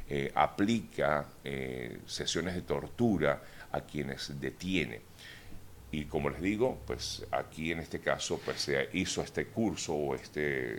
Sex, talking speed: male, 140 wpm